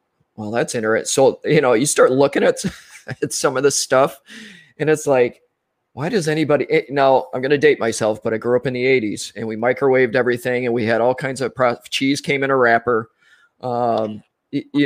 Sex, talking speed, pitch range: male, 210 wpm, 115-135 Hz